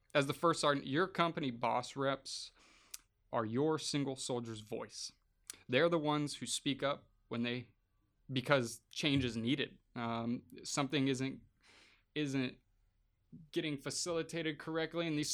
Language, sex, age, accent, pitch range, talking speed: English, male, 20-39, American, 115-145 Hz, 135 wpm